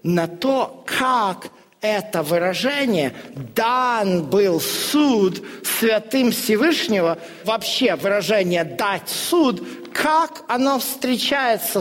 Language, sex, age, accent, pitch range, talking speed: Russian, male, 50-69, native, 210-300 Hz, 85 wpm